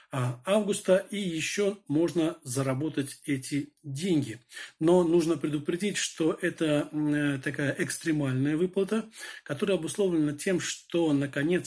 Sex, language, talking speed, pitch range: male, Turkish, 105 wpm, 140-175 Hz